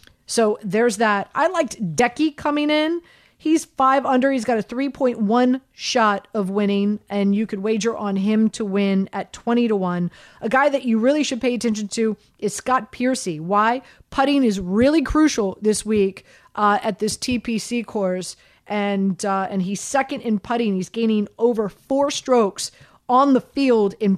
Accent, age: American, 40-59